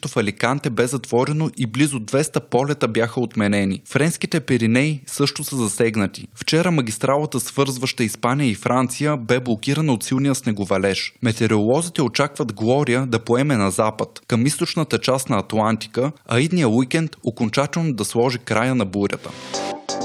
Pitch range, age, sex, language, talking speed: 115-145 Hz, 20-39, male, Bulgarian, 140 wpm